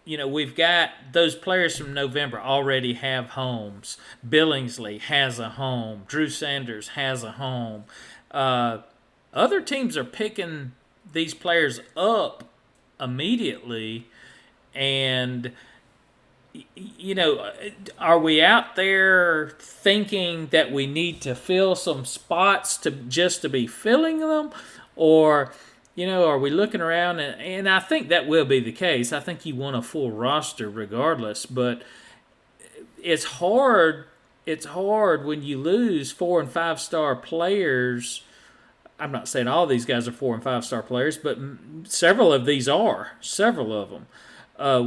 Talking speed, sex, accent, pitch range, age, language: 145 wpm, male, American, 130-175 Hz, 40-59, English